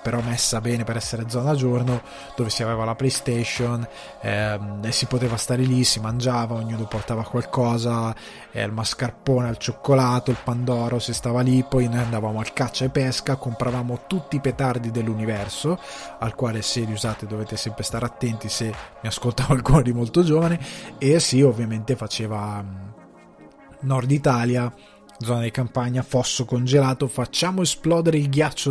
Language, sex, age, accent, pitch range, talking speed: Italian, male, 20-39, native, 110-130 Hz, 165 wpm